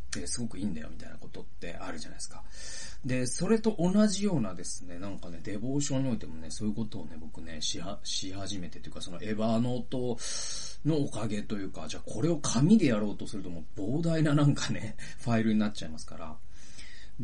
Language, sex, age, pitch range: Japanese, male, 30-49, 95-140 Hz